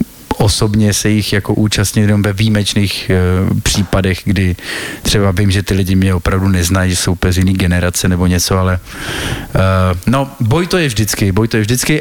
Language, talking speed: Slovak, 175 wpm